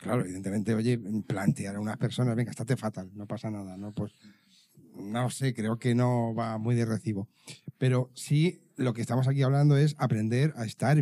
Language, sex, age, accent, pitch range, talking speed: Spanish, male, 40-59, Spanish, 115-150 Hz, 190 wpm